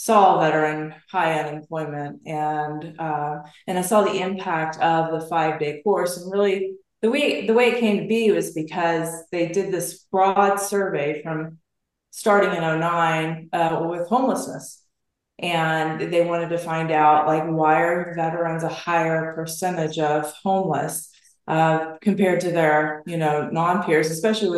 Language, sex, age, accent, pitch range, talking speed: English, female, 30-49, American, 160-195 Hz, 150 wpm